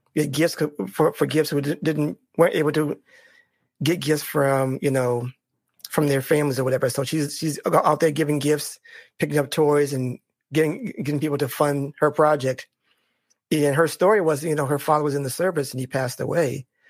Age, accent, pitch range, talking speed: 30-49, American, 145-180 Hz, 190 wpm